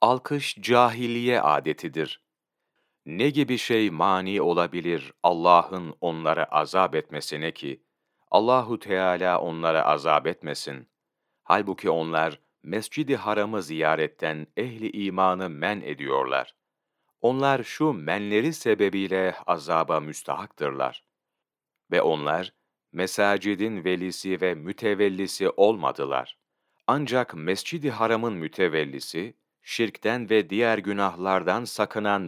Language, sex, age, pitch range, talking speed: Turkish, male, 40-59, 90-120 Hz, 90 wpm